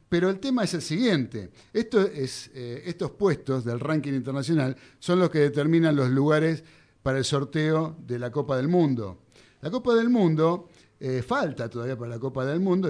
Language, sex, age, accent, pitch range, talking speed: Spanish, male, 50-69, Argentinian, 130-180 Hz, 185 wpm